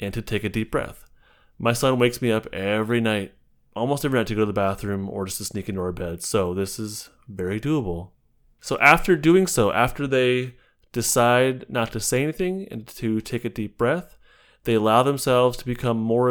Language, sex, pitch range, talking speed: English, male, 100-120 Hz, 205 wpm